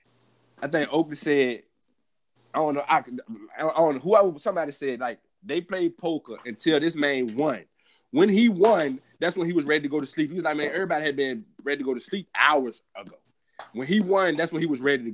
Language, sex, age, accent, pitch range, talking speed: English, male, 20-39, American, 135-180 Hz, 230 wpm